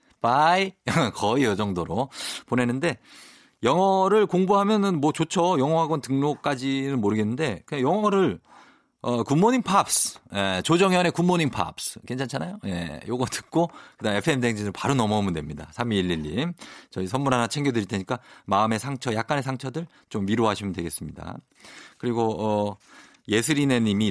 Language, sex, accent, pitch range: Korean, male, native, 95-140 Hz